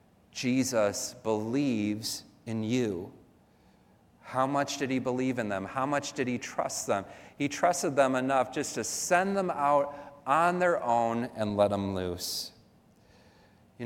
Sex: male